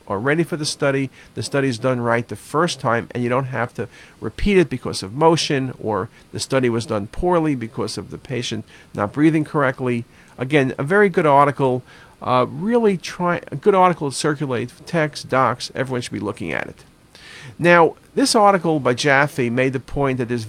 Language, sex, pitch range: English, male, 125-165 Hz